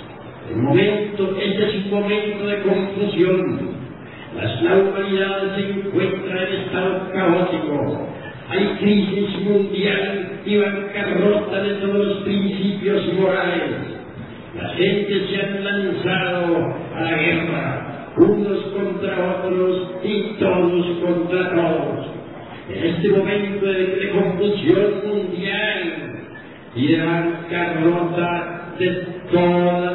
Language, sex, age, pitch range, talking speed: Spanish, male, 50-69, 160-190 Hz, 105 wpm